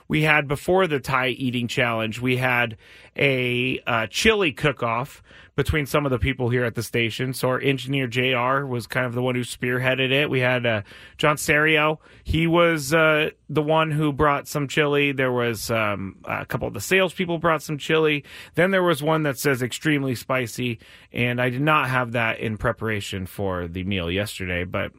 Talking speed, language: 190 wpm, English